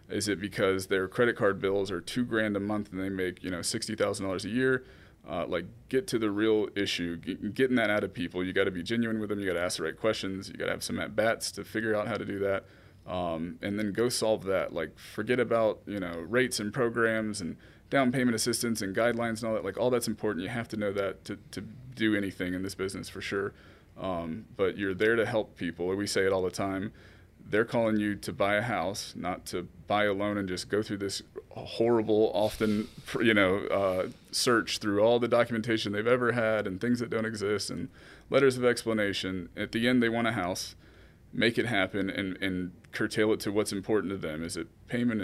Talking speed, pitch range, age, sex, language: 235 wpm, 95-110 Hz, 20-39, male, English